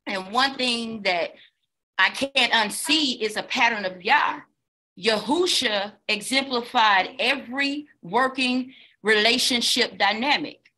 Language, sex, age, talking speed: English, female, 30-49, 100 wpm